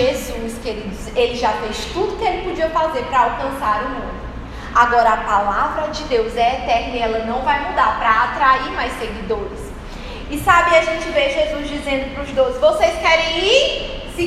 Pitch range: 230-300 Hz